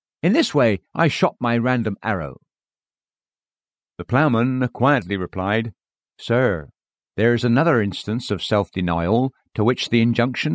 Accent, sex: British, male